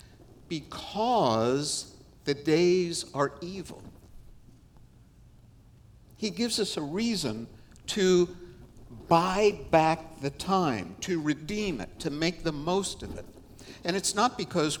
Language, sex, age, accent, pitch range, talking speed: English, male, 60-79, American, 120-180 Hz, 115 wpm